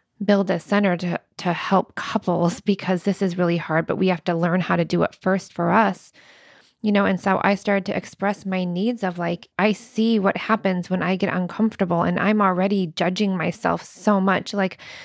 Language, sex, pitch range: English, female, 180-205 Hz